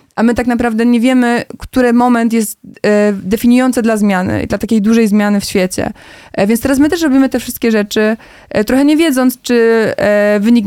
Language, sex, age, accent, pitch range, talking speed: Polish, female, 20-39, native, 210-240 Hz, 175 wpm